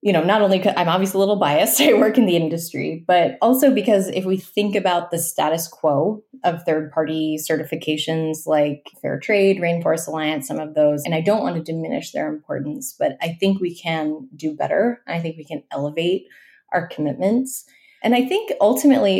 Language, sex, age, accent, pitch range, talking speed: English, female, 20-39, American, 160-210 Hz, 190 wpm